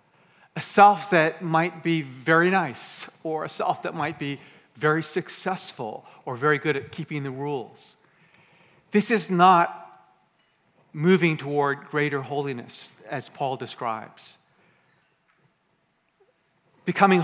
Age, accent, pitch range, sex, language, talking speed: 50-69, American, 135-170 Hz, male, English, 115 wpm